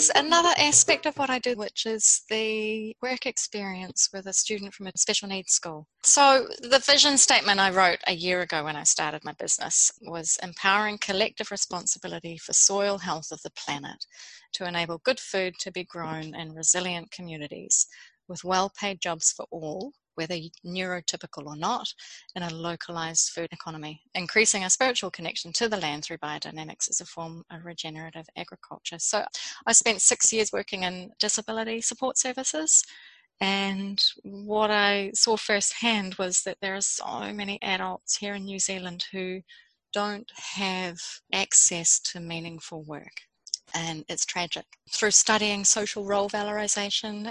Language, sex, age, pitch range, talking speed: English, female, 30-49, 175-215 Hz, 155 wpm